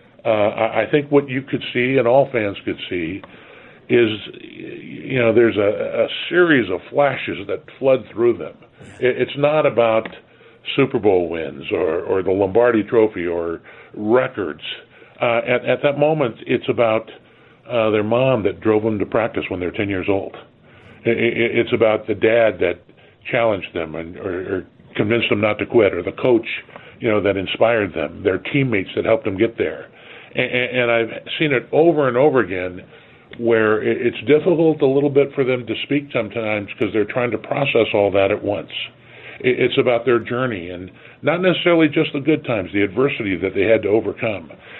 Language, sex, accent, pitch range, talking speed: English, female, American, 110-140 Hz, 180 wpm